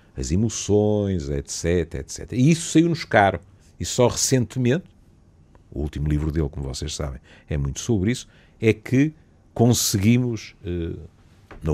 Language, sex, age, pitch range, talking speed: Portuguese, male, 50-69, 75-105 Hz, 135 wpm